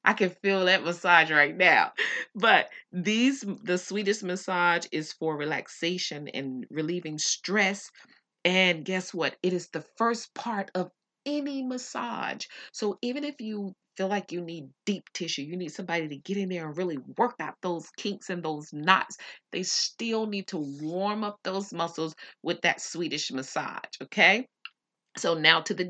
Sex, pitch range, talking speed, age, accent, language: female, 150-195 Hz, 165 wpm, 30-49, American, English